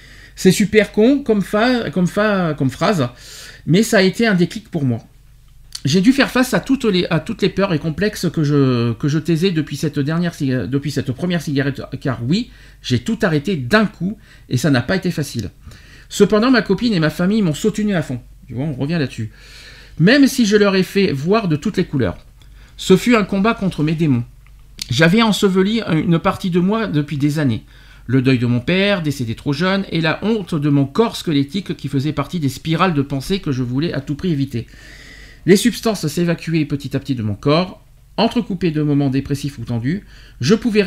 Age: 50-69